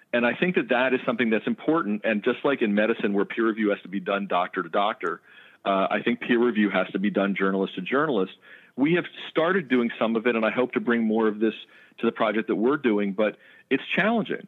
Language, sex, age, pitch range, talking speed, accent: English, male, 40-59, 105-125 Hz, 250 wpm, American